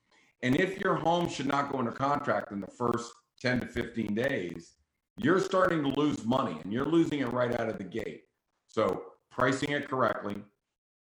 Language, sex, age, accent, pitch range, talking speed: English, male, 50-69, American, 105-130 Hz, 185 wpm